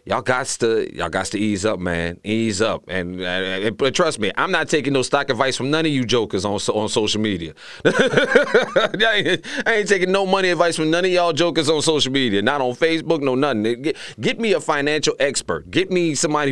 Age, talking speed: 30-49, 220 wpm